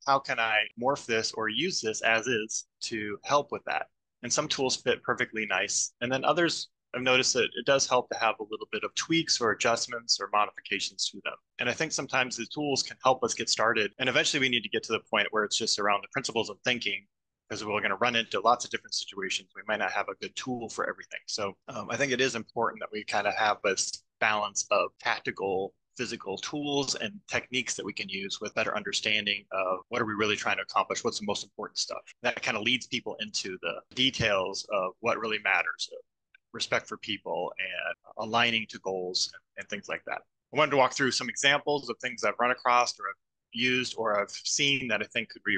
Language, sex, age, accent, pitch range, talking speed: English, male, 20-39, American, 110-130 Hz, 230 wpm